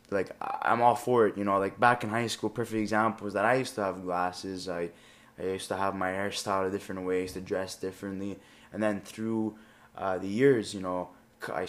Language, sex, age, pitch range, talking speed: English, male, 20-39, 95-110 Hz, 220 wpm